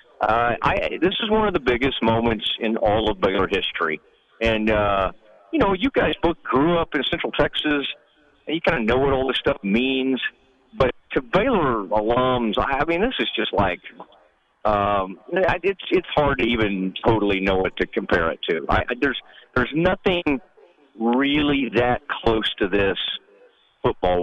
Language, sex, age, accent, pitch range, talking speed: English, male, 50-69, American, 105-145 Hz, 180 wpm